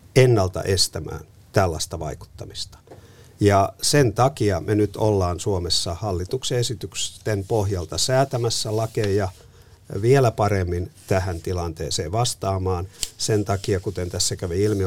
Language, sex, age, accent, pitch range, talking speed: Finnish, male, 50-69, native, 90-110 Hz, 110 wpm